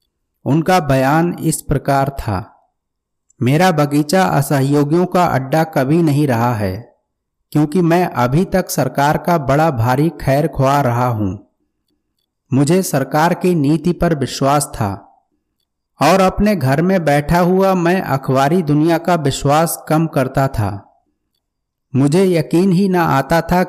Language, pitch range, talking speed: Hindi, 130-175 Hz, 135 wpm